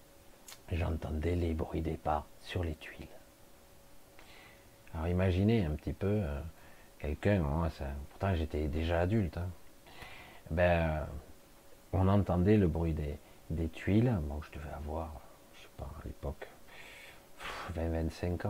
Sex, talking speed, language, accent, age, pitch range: male, 135 wpm, French, French, 50-69, 80-105 Hz